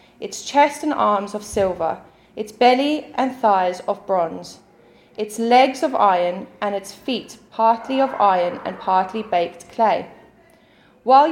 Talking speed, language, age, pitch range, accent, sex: 145 wpm, English, 20-39, 200-255 Hz, British, female